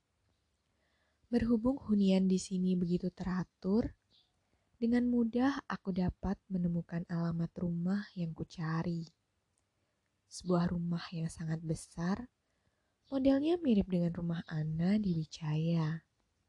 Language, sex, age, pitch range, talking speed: Indonesian, female, 20-39, 160-245 Hz, 100 wpm